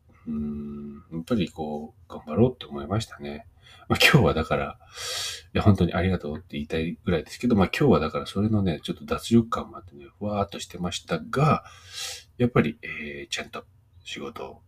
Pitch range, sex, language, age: 80-100 Hz, male, Japanese, 40-59